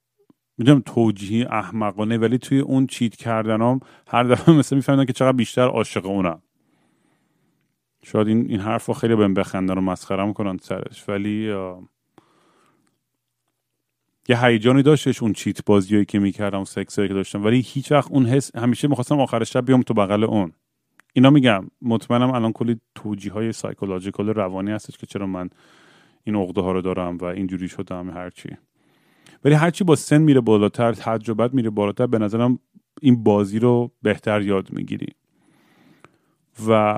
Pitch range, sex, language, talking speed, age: 100-125 Hz, male, Persian, 150 wpm, 30-49